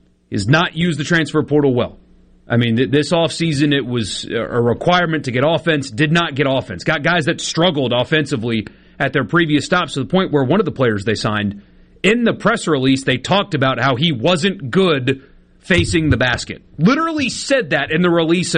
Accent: American